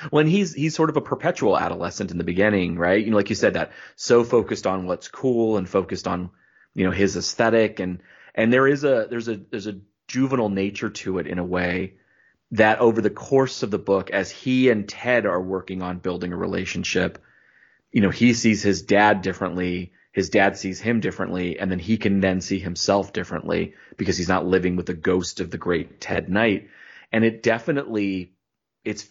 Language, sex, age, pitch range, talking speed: English, male, 30-49, 90-115 Hz, 205 wpm